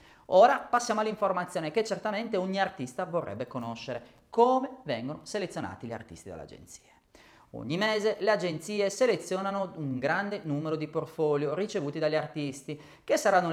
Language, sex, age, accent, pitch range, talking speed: Italian, male, 30-49, native, 150-215 Hz, 135 wpm